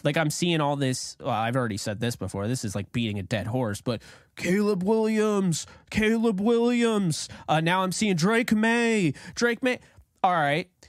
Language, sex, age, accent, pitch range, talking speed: English, male, 20-39, American, 145-210 Hz, 195 wpm